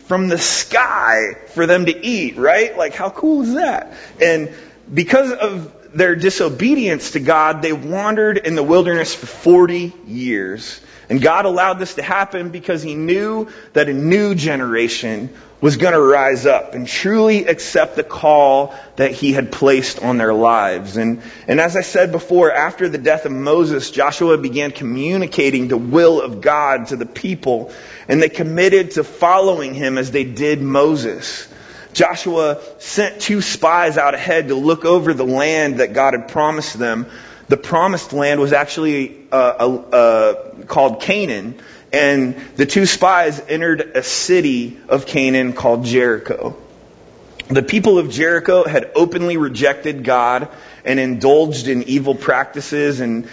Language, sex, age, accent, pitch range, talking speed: English, male, 30-49, American, 130-175 Hz, 155 wpm